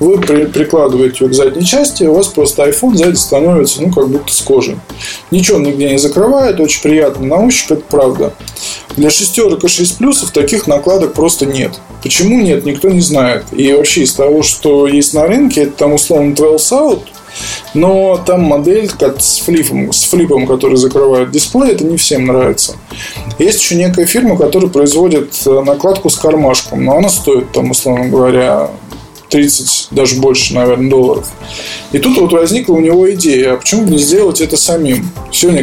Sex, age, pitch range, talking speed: male, 20-39, 135-175 Hz, 175 wpm